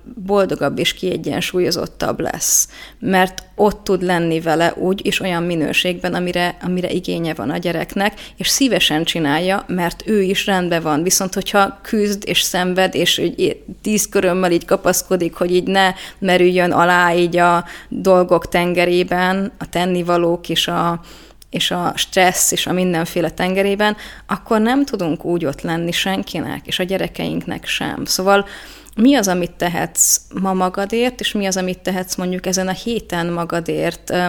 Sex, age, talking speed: female, 30-49, 145 wpm